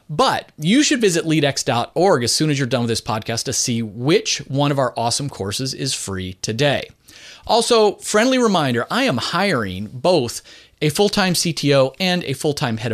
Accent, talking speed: American, 175 wpm